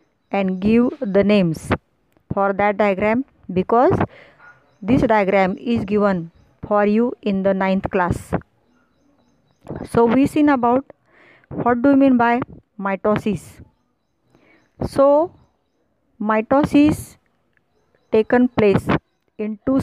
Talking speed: 105 wpm